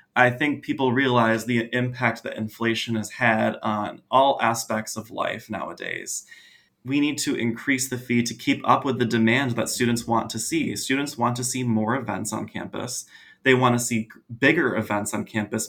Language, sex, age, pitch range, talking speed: English, male, 20-39, 110-125 Hz, 185 wpm